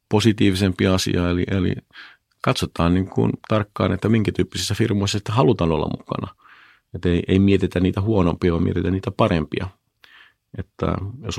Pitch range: 85-100 Hz